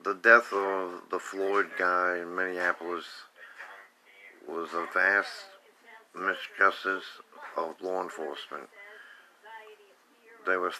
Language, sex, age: English, male, 50-69